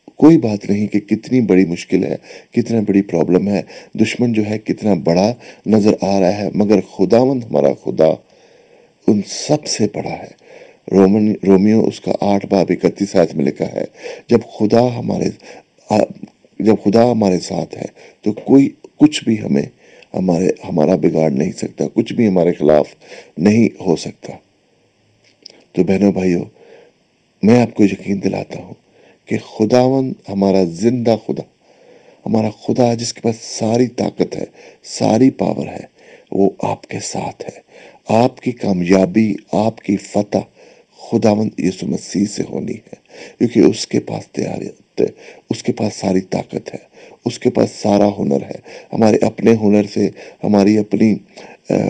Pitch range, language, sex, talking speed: 95-110 Hz, English, male, 140 wpm